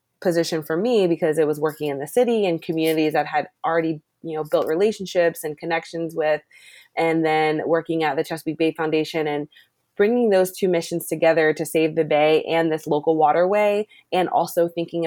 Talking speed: 185 wpm